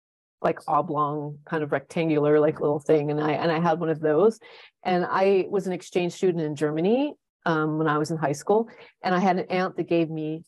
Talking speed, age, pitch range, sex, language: 225 wpm, 30-49, 160-205 Hz, female, English